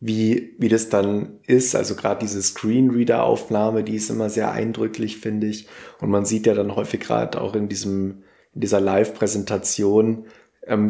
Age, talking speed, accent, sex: 20-39, 165 wpm, German, male